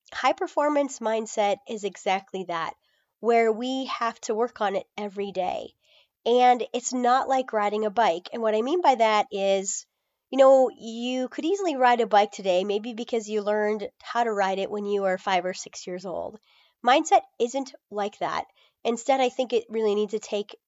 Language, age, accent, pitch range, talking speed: English, 30-49, American, 200-245 Hz, 190 wpm